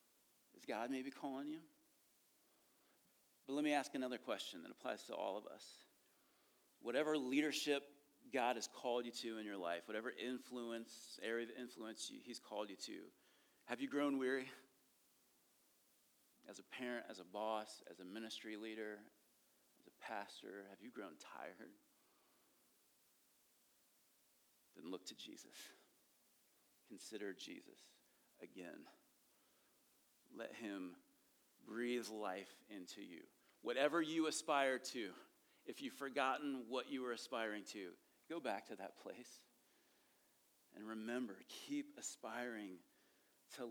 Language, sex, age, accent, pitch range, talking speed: English, male, 40-59, American, 110-145 Hz, 125 wpm